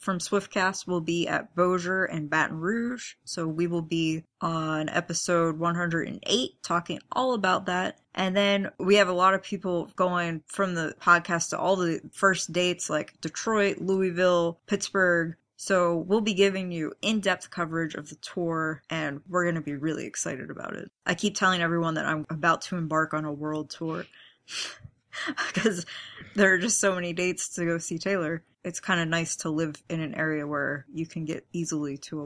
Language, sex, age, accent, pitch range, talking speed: English, female, 20-39, American, 160-195 Hz, 185 wpm